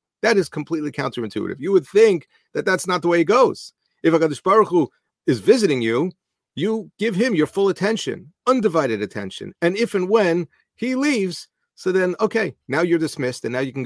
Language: English